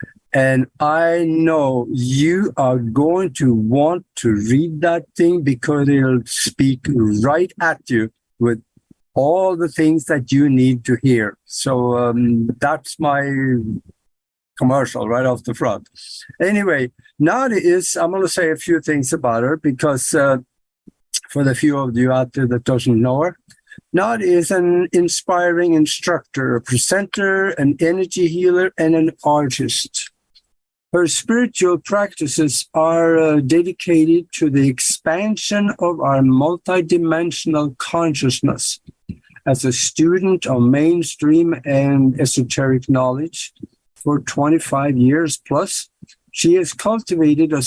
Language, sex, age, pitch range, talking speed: English, male, 60-79, 130-170 Hz, 130 wpm